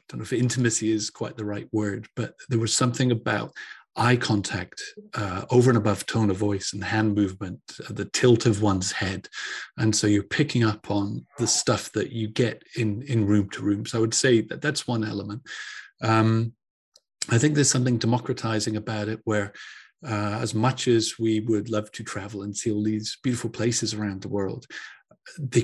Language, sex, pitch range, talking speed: English, male, 105-120 Hz, 200 wpm